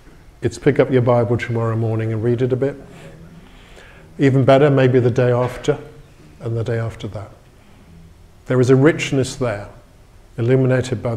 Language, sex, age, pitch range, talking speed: English, male, 50-69, 115-140 Hz, 160 wpm